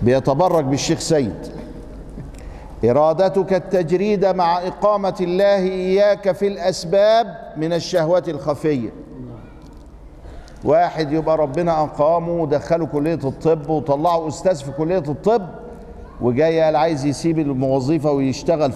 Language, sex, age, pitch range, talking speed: Arabic, male, 50-69, 140-185 Hz, 100 wpm